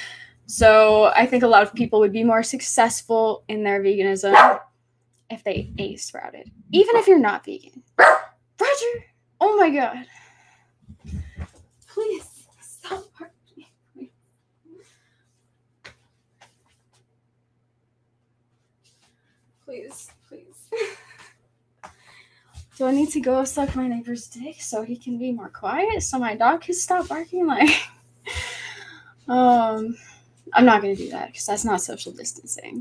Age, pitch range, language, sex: 10-29, 180-260 Hz, English, female